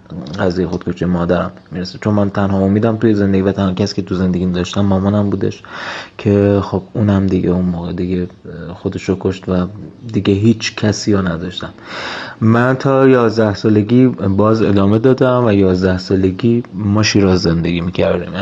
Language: Persian